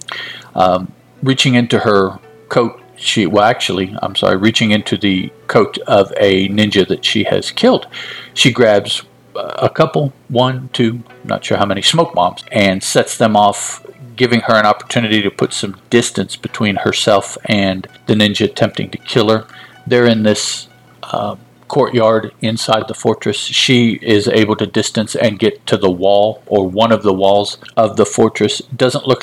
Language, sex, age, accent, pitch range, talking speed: English, male, 50-69, American, 105-115 Hz, 170 wpm